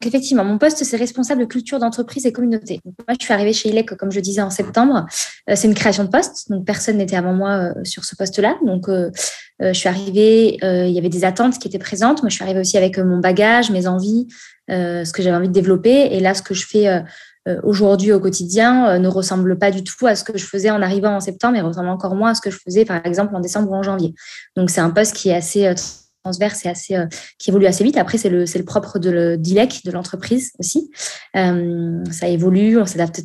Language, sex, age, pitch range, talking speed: French, female, 20-39, 185-225 Hz, 245 wpm